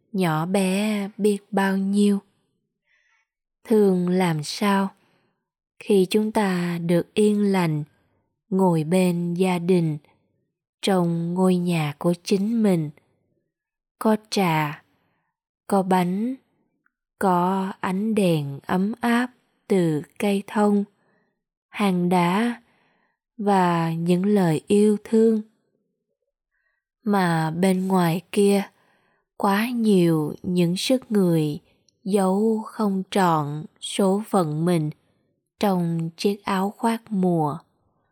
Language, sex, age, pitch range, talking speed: Vietnamese, female, 20-39, 175-210 Hz, 100 wpm